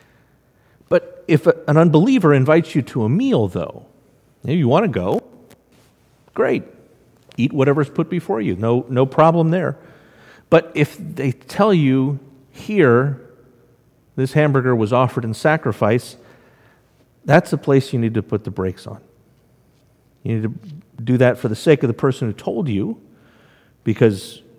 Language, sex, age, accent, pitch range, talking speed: English, male, 50-69, American, 115-150 Hz, 150 wpm